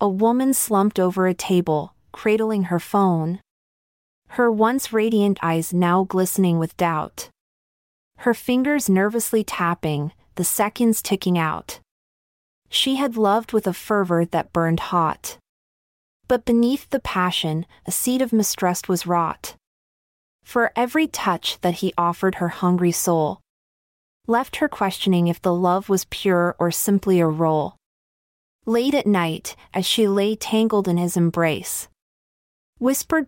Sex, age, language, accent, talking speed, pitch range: female, 30-49, English, American, 135 wpm, 175-230 Hz